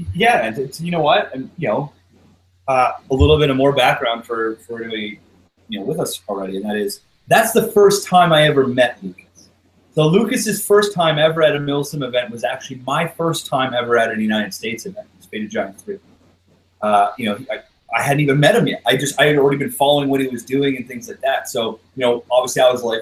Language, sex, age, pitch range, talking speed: English, male, 30-49, 110-170 Hz, 235 wpm